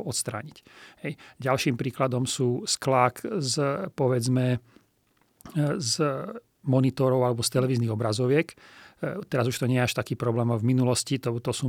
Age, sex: 40-59, male